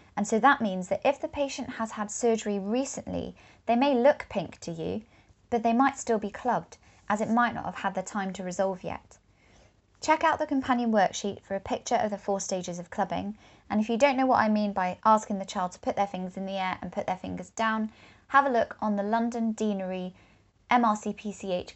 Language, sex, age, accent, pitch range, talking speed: English, female, 20-39, British, 180-230 Hz, 225 wpm